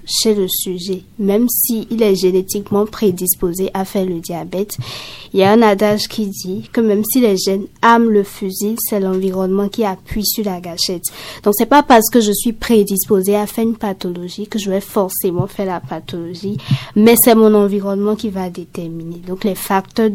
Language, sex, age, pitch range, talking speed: French, female, 20-39, 190-220 Hz, 195 wpm